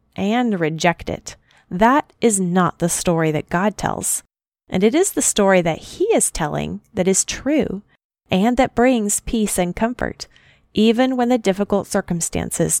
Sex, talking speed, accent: female, 160 wpm, American